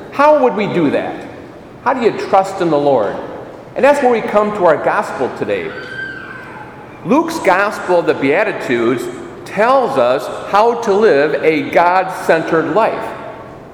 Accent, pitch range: American, 170-280 Hz